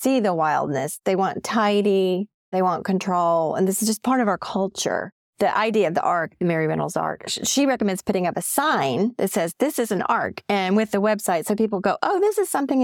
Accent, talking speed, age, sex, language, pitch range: American, 225 wpm, 40-59, female, English, 170-215 Hz